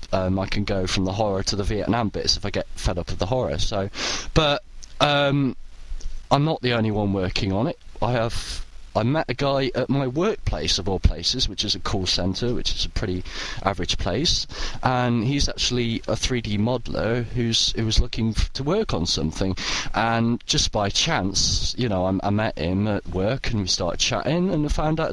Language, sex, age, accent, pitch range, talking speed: English, male, 20-39, British, 95-120 Hz, 205 wpm